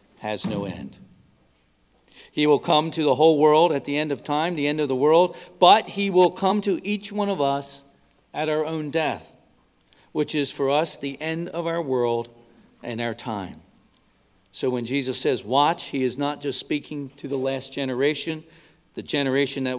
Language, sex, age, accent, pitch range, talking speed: English, male, 50-69, American, 125-160 Hz, 190 wpm